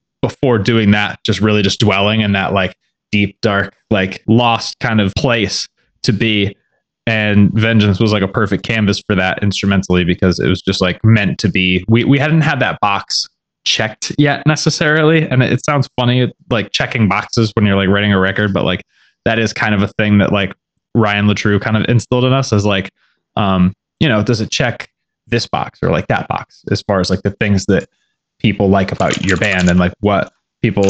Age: 20-39